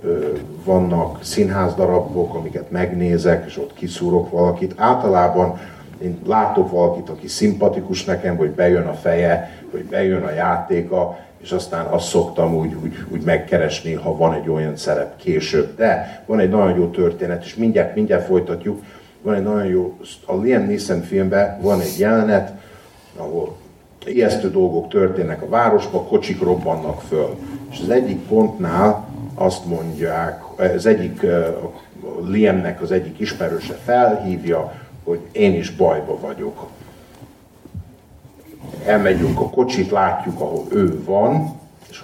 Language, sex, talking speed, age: Hungarian, male, 135 wpm, 50-69